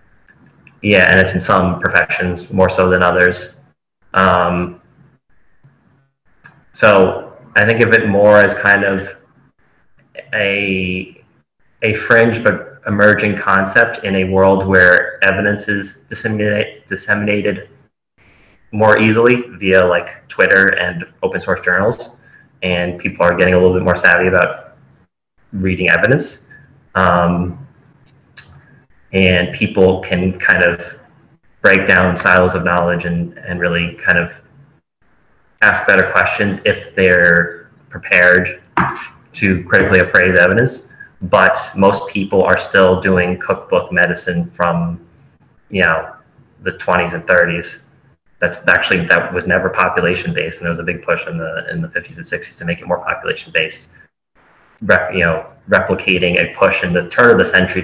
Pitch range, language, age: 90-105 Hz, English, 20-39